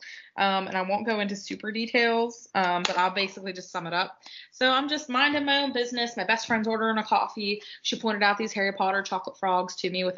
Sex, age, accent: female, 20-39, American